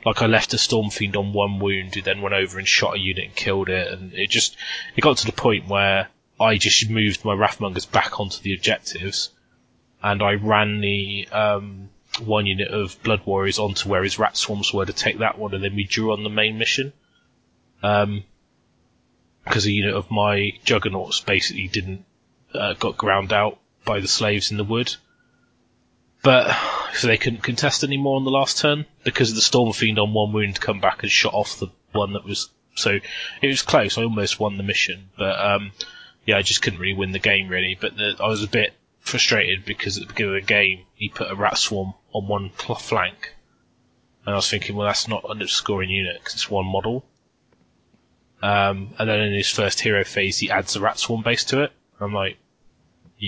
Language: English